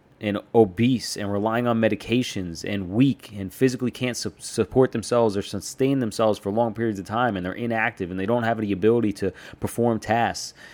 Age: 30-49